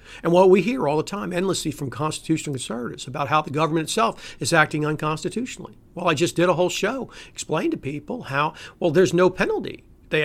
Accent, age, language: American, 50-69, English